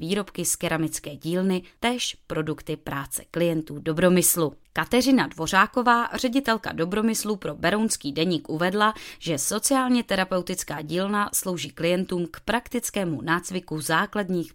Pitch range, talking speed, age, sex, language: 155-215 Hz, 110 wpm, 20-39, female, Czech